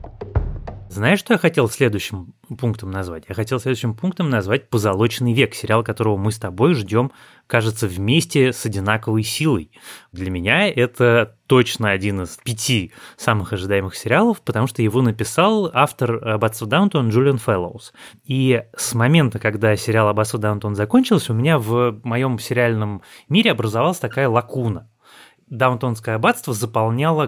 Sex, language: male, Russian